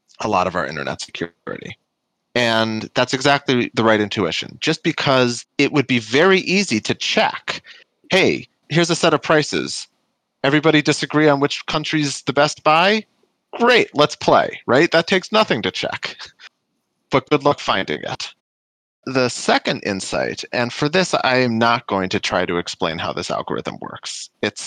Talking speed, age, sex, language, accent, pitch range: 165 wpm, 30-49, male, English, American, 105-145 Hz